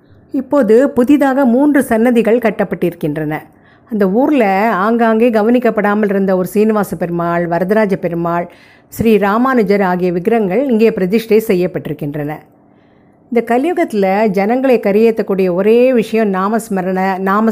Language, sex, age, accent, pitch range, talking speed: Tamil, female, 50-69, native, 185-230 Hz, 105 wpm